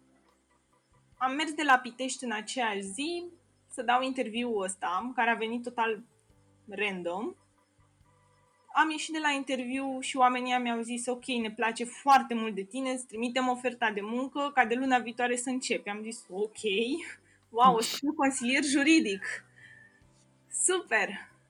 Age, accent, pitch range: 20-39, native, 210-260 Hz